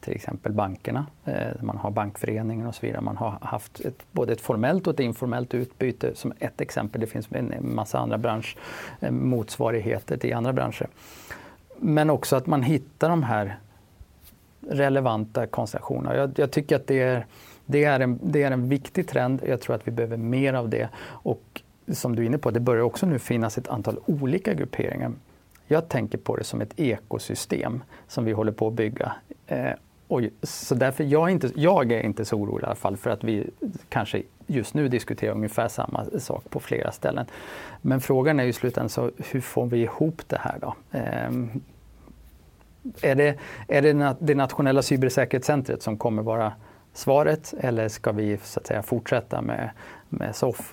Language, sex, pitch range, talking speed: Swedish, male, 110-140 Hz, 180 wpm